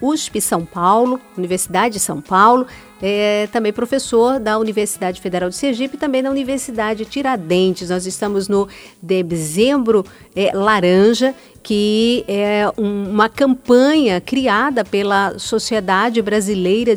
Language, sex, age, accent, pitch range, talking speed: Portuguese, female, 50-69, Brazilian, 200-245 Hz, 115 wpm